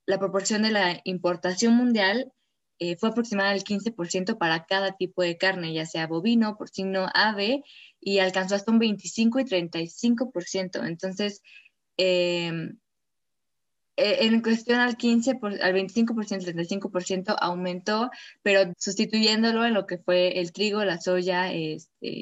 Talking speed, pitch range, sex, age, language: 130 wpm, 180-225 Hz, female, 20-39, Spanish